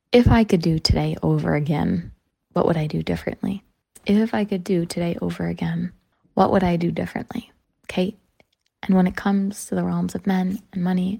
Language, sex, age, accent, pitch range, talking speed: English, female, 20-39, American, 170-205 Hz, 195 wpm